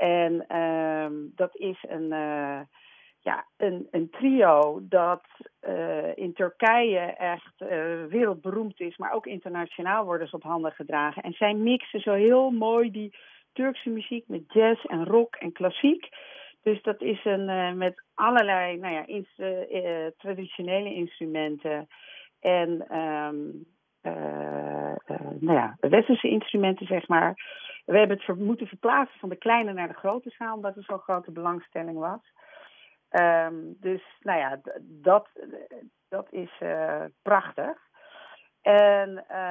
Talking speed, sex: 130 wpm, female